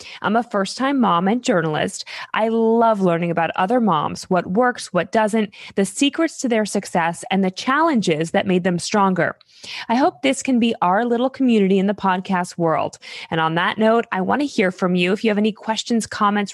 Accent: American